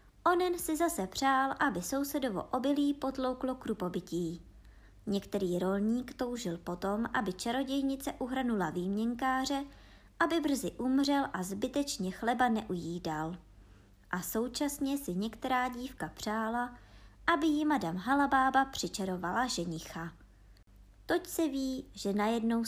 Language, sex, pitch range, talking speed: Czech, male, 175-260 Hz, 110 wpm